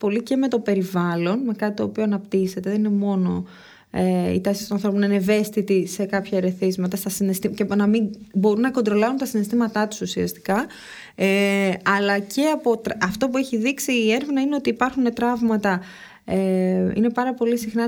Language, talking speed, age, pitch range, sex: Greek, 180 wpm, 20-39, 180-220 Hz, female